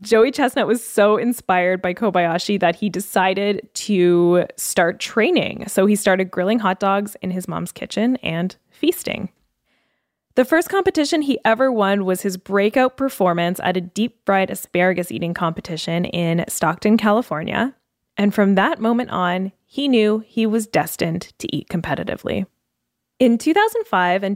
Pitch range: 180-230 Hz